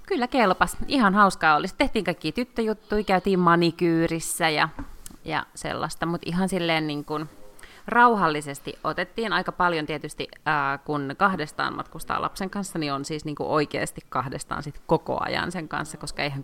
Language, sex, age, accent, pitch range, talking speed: Finnish, female, 30-49, native, 145-185 Hz, 155 wpm